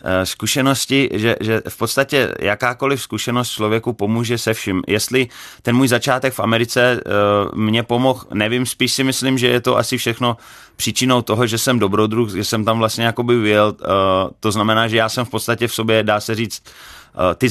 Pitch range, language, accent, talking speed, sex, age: 95-120 Hz, Czech, native, 175 wpm, male, 30-49